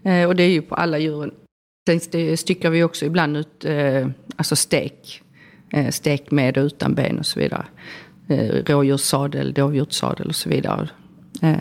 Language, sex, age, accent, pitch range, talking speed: Swedish, female, 40-59, native, 150-180 Hz, 145 wpm